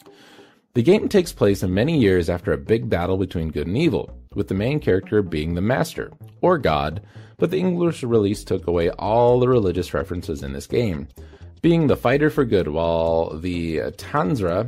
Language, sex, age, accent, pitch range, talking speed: English, male, 30-49, American, 85-130 Hz, 185 wpm